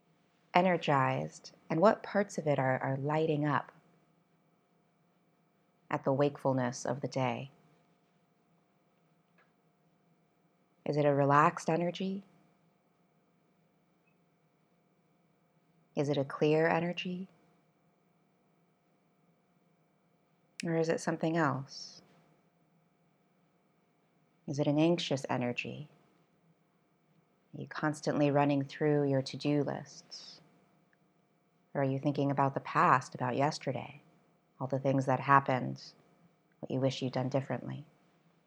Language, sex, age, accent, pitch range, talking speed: English, female, 20-39, American, 145-175 Hz, 100 wpm